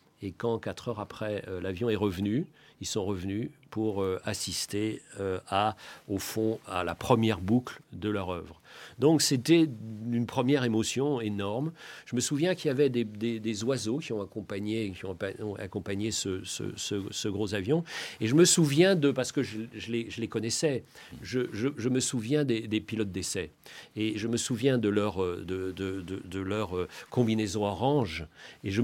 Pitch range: 105-135 Hz